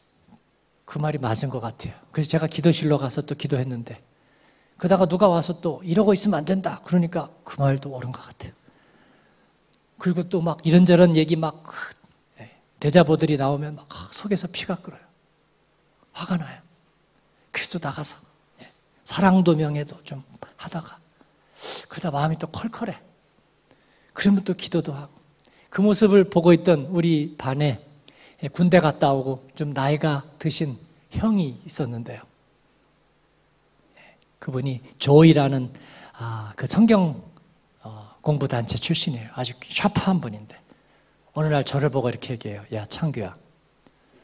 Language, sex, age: Korean, male, 40-59